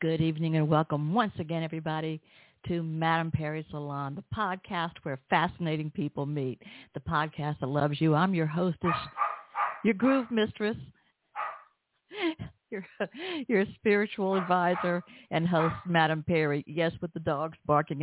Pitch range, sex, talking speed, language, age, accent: 155-195 Hz, female, 135 wpm, English, 60-79, American